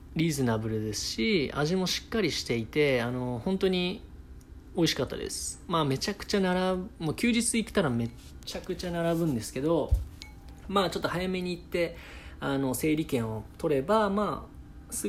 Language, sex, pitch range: Japanese, male, 120-180 Hz